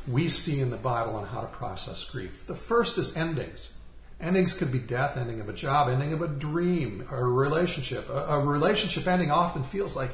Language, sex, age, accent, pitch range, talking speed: English, male, 50-69, American, 125-170 Hz, 215 wpm